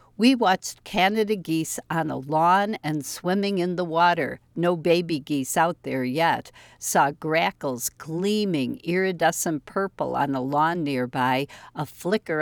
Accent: American